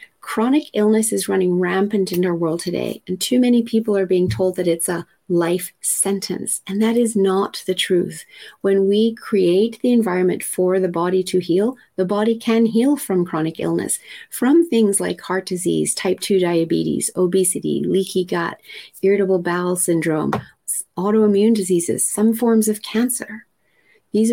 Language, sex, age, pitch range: English, female, 30-49, 175-215 Hz